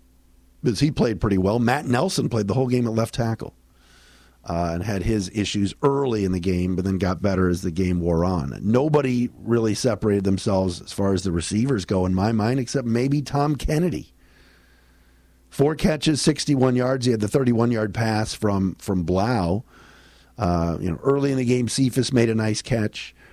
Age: 50-69